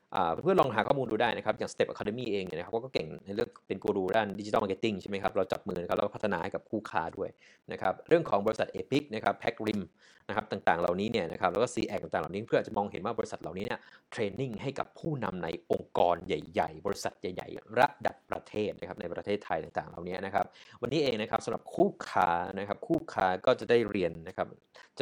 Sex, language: male, Thai